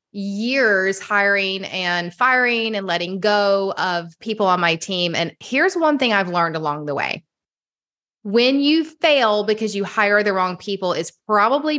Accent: American